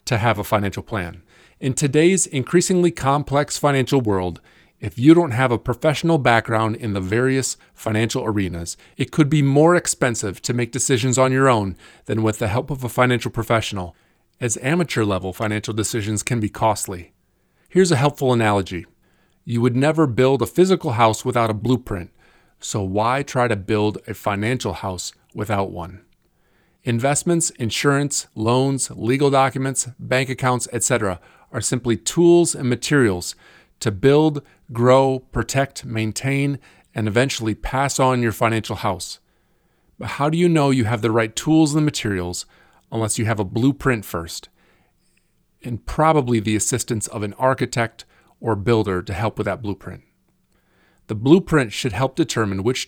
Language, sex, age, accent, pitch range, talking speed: English, male, 40-59, American, 105-135 Hz, 155 wpm